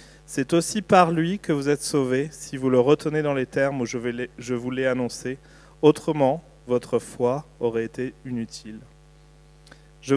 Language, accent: French, French